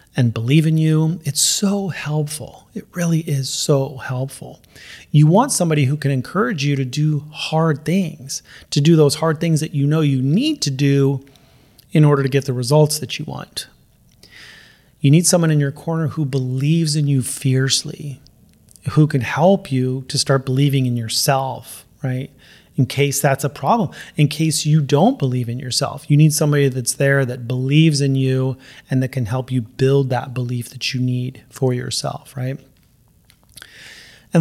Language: English